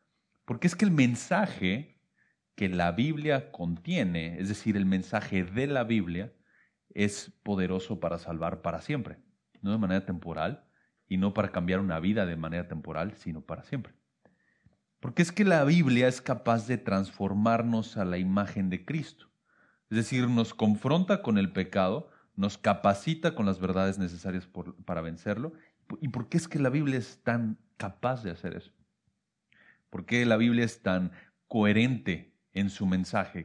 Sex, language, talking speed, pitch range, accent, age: male, English, 160 wpm, 95-135 Hz, Mexican, 40-59